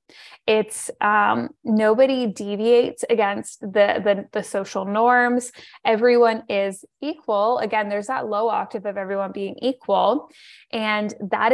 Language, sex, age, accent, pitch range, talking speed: English, female, 10-29, American, 205-245 Hz, 125 wpm